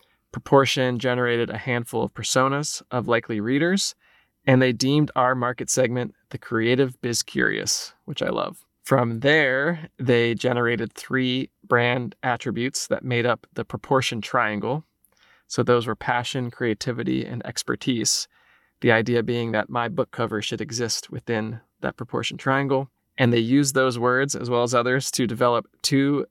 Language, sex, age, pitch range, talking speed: English, male, 20-39, 120-135 Hz, 155 wpm